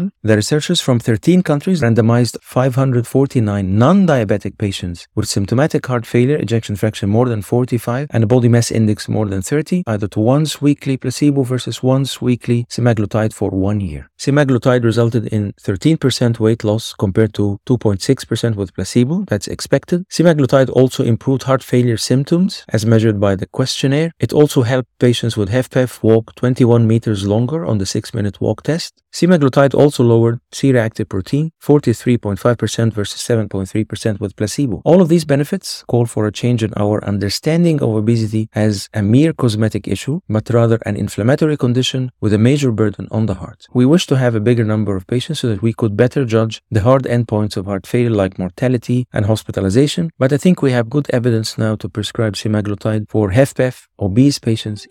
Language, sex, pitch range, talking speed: English, male, 110-135 Hz, 175 wpm